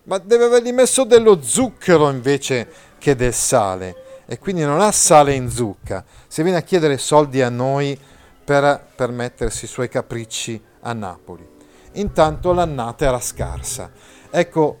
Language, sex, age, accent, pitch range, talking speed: Italian, male, 40-59, native, 120-170 Hz, 150 wpm